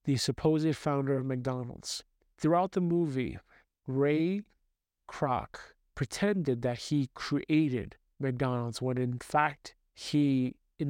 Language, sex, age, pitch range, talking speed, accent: English, male, 40-59, 130-150 Hz, 110 wpm, American